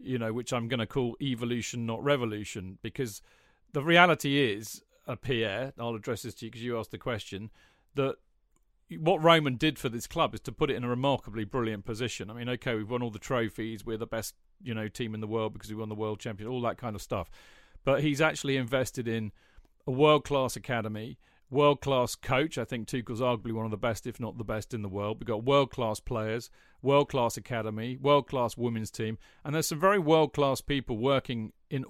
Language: English